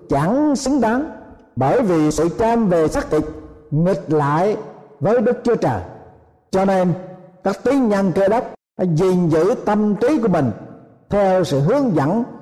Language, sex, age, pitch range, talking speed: Vietnamese, male, 60-79, 155-220 Hz, 165 wpm